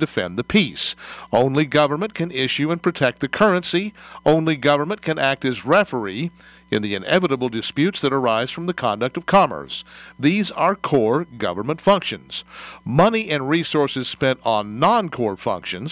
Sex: male